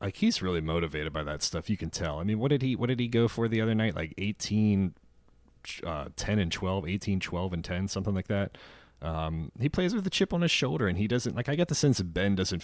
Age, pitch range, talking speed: 30-49, 80-100 Hz, 265 wpm